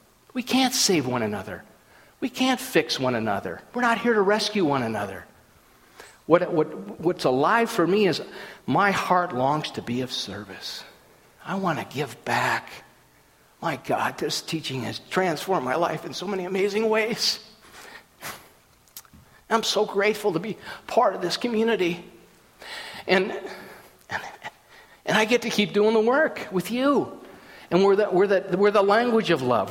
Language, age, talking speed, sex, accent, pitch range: English, 50-69, 160 wpm, male, American, 170-230 Hz